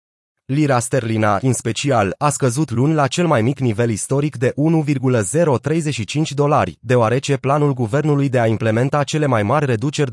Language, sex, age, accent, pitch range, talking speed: Romanian, male, 30-49, native, 115-150 Hz, 155 wpm